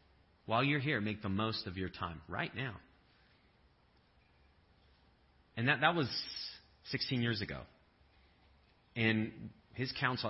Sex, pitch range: male, 90-125 Hz